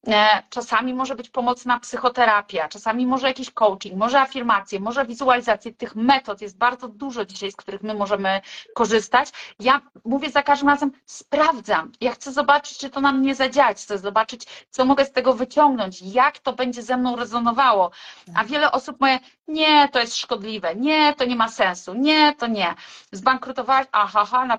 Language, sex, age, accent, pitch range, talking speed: Polish, female, 30-49, native, 220-275 Hz, 170 wpm